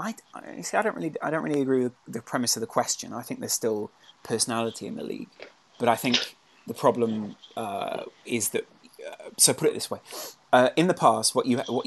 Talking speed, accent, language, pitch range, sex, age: 225 wpm, British, English, 115-135 Hz, male, 20-39